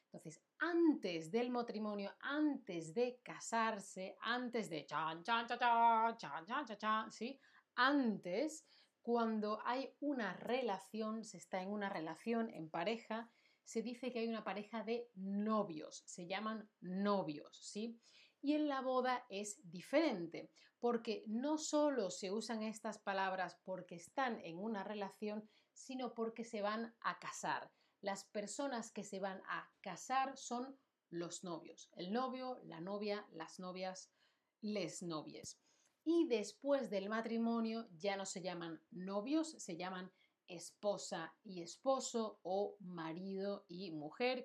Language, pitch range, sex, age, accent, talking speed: Spanish, 190-245 Hz, female, 30-49, Spanish, 140 wpm